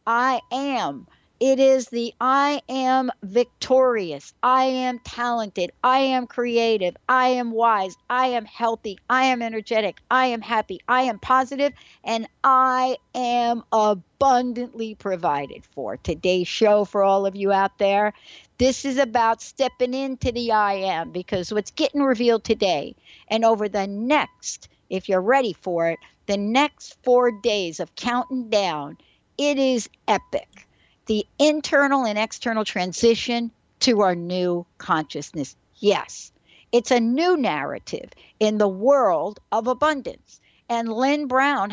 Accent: American